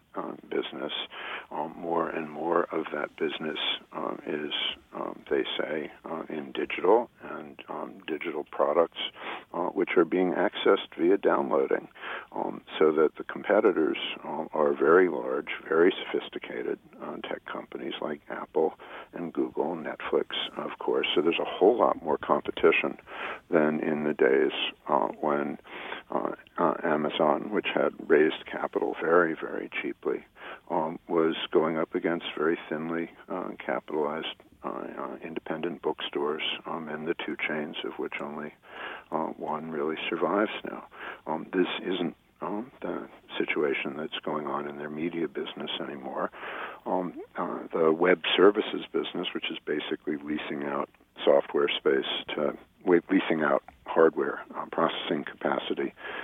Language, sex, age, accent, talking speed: English, male, 50-69, American, 140 wpm